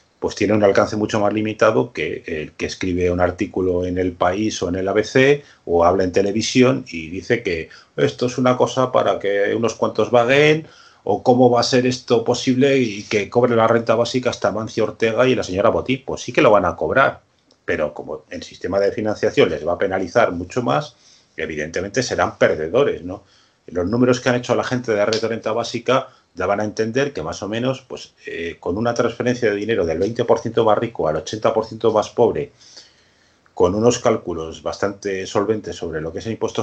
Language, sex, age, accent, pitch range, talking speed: Spanish, male, 30-49, Spanish, 100-125 Hz, 205 wpm